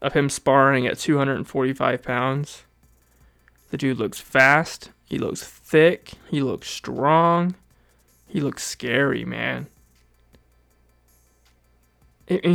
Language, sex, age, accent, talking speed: English, male, 20-39, American, 100 wpm